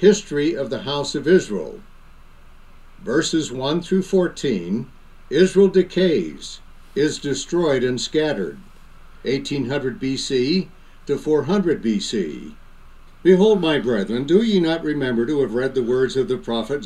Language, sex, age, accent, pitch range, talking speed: English, male, 60-79, American, 130-175 Hz, 130 wpm